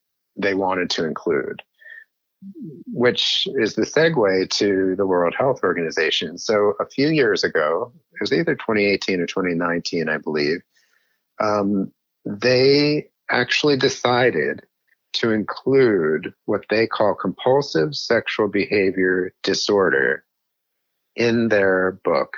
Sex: male